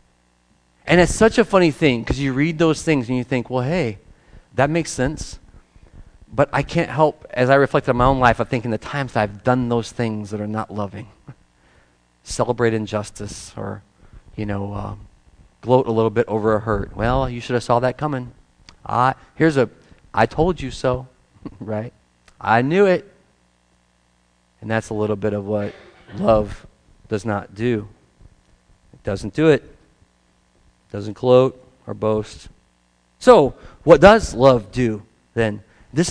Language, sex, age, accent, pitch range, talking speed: English, male, 40-59, American, 105-150 Hz, 165 wpm